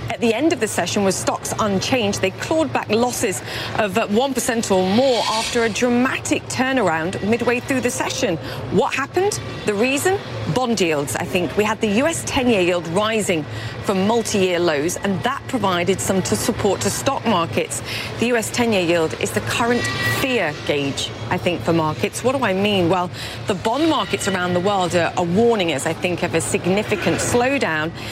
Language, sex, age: English, female, 40-59